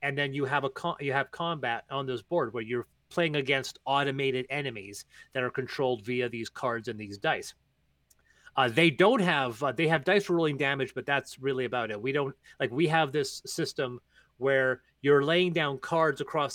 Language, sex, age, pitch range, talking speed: English, male, 30-49, 130-170 Hz, 200 wpm